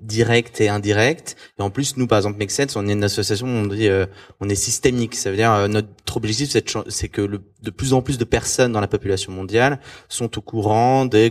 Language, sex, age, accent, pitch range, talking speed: French, male, 20-39, French, 110-135 Hz, 245 wpm